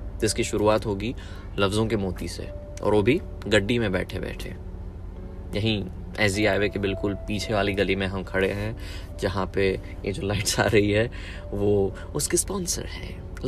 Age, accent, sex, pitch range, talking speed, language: 20-39, native, male, 95-120 Hz, 170 wpm, Hindi